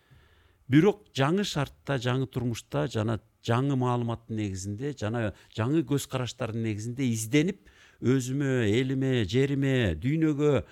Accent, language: Turkish, Russian